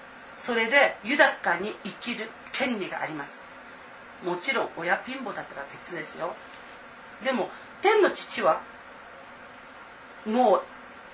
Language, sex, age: Japanese, female, 40-59